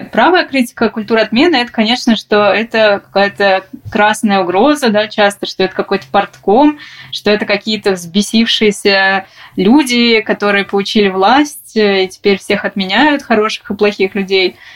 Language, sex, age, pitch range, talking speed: Russian, female, 20-39, 195-230 Hz, 135 wpm